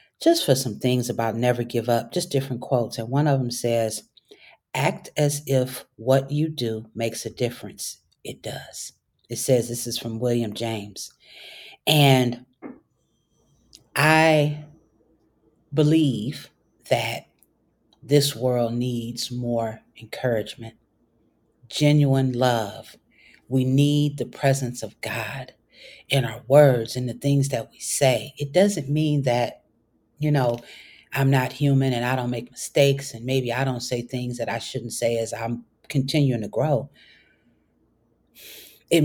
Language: English